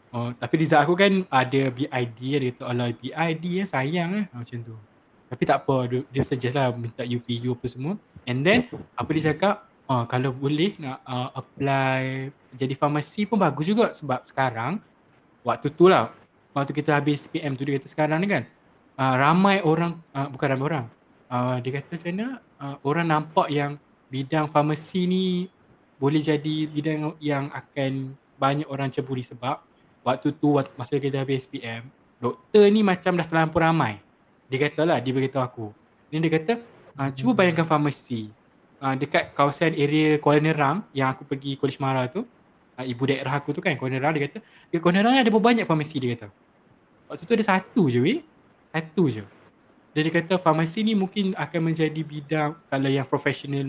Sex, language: male, Malay